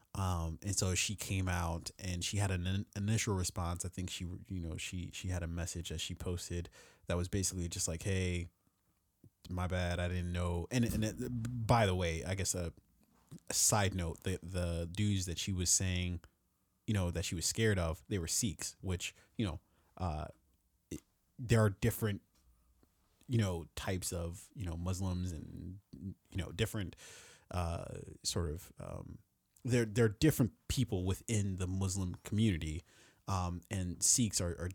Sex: male